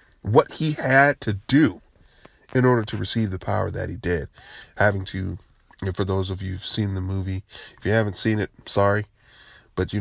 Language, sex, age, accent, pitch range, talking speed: English, male, 20-39, American, 95-130 Hz, 190 wpm